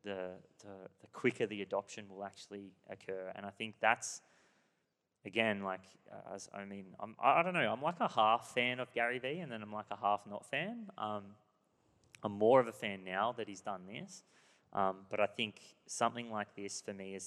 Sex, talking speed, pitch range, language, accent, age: male, 210 wpm, 95-105 Hz, English, Australian, 20-39